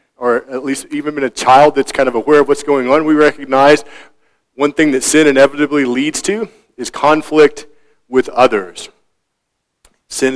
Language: English